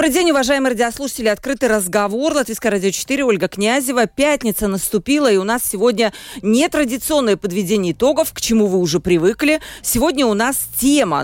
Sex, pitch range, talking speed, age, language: female, 200-275 Hz, 155 wpm, 40-59, Russian